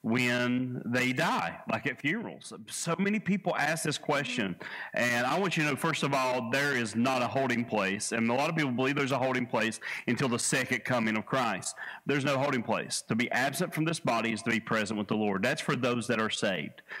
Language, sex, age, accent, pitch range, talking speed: English, male, 40-59, American, 120-155 Hz, 235 wpm